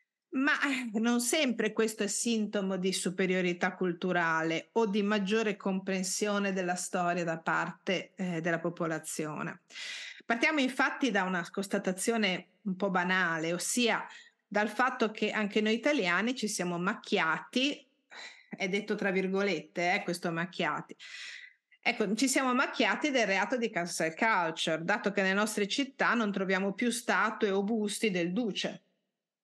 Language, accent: Italian, native